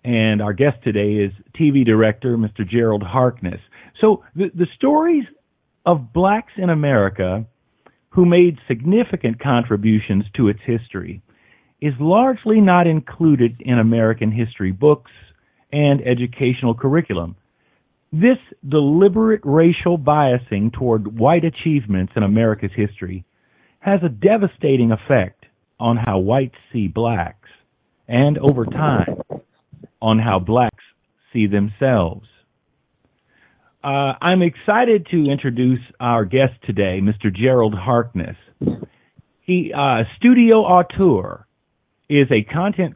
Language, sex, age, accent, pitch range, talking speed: English, male, 40-59, American, 110-155 Hz, 115 wpm